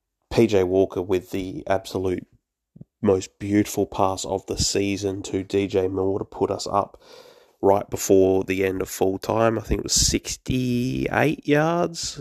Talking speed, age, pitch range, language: 150 wpm, 20-39, 90-115 Hz, English